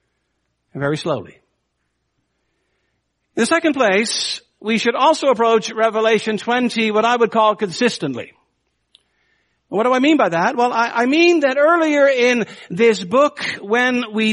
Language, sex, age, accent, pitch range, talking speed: English, male, 60-79, American, 205-260 Hz, 140 wpm